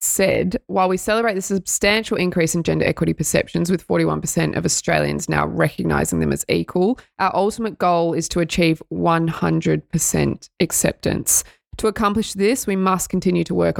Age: 20-39